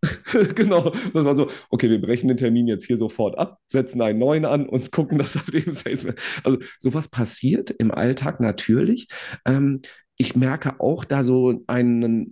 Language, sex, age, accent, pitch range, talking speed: German, male, 40-59, German, 100-125 Hz, 170 wpm